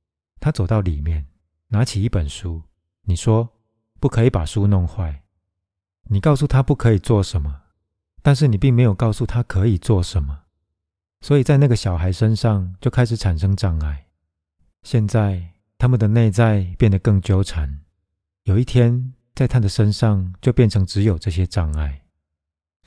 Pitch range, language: 85-115 Hz, Chinese